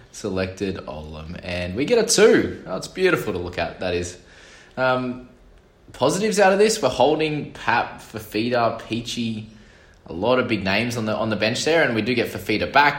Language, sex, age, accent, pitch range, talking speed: English, male, 20-39, Australian, 90-115 Hz, 195 wpm